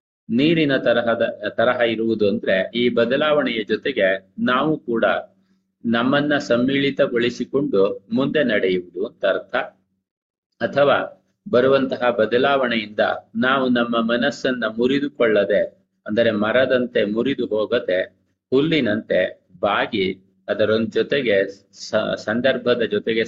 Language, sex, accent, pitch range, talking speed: Kannada, male, native, 100-125 Hz, 85 wpm